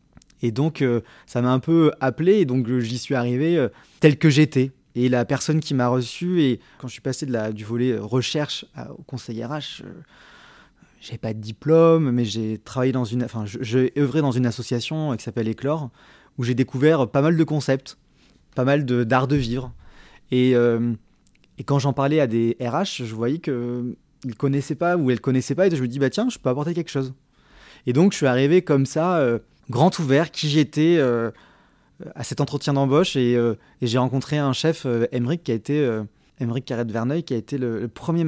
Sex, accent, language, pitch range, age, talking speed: male, French, French, 120-150 Hz, 20-39, 220 wpm